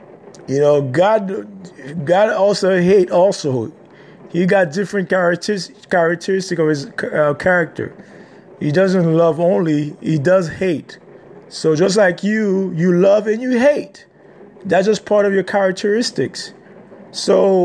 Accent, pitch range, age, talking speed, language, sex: American, 180-210 Hz, 30-49, 130 wpm, English, male